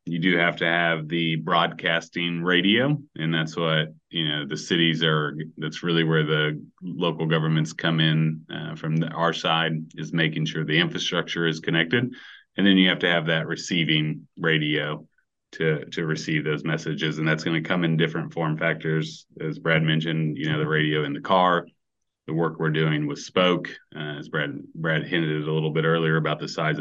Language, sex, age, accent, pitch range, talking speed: English, male, 30-49, American, 80-85 Hz, 190 wpm